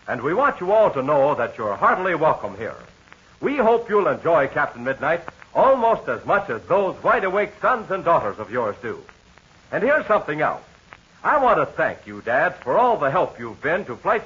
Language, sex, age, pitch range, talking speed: English, male, 60-79, 170-240 Hz, 200 wpm